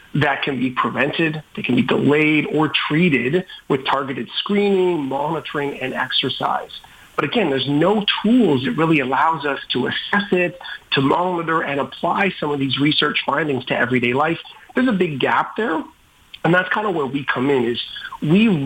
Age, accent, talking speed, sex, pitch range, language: 40-59, American, 175 wpm, male, 135-170 Hz, English